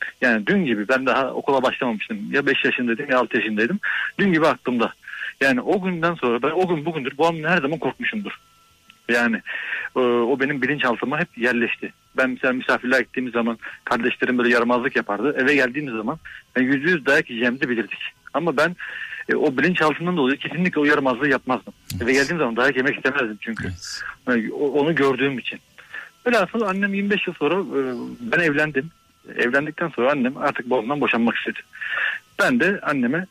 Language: Turkish